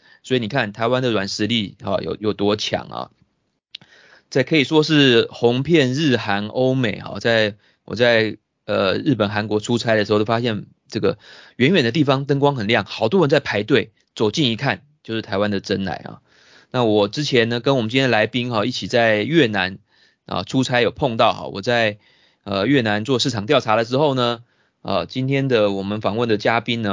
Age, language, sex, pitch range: 20-39, Chinese, male, 105-130 Hz